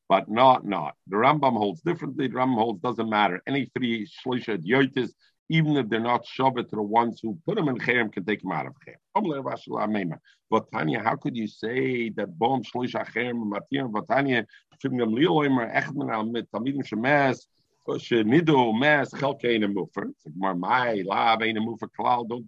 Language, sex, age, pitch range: English, male, 50-69, 110-135 Hz